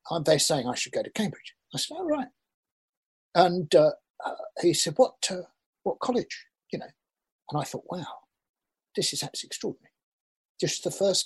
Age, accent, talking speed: 50-69, British, 185 wpm